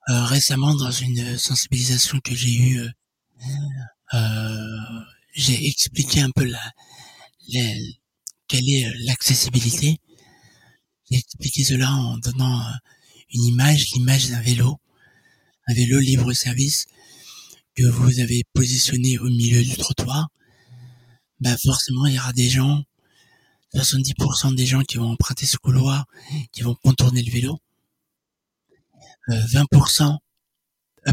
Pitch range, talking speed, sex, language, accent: 120-140 Hz, 120 wpm, male, French, French